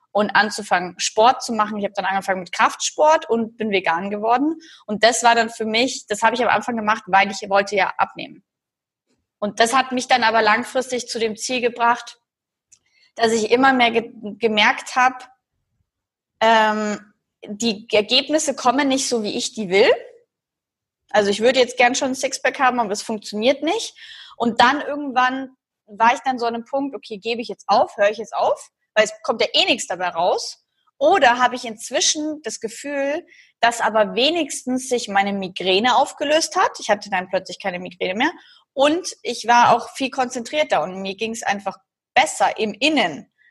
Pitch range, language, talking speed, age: 215-275 Hz, German, 185 wpm, 20-39